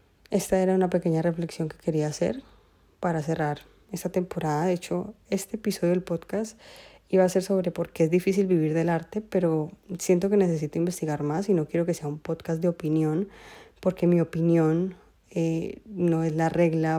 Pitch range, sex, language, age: 160-185 Hz, female, Spanish, 20-39